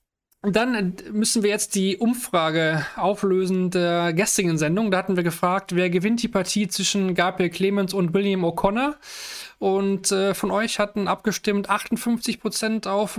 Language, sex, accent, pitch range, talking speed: German, male, German, 175-210 Hz, 140 wpm